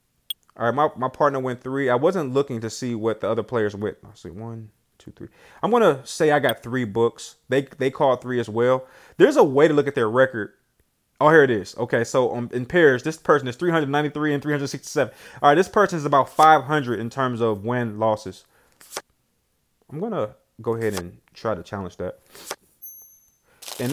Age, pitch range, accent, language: 20-39, 120-155 Hz, American, English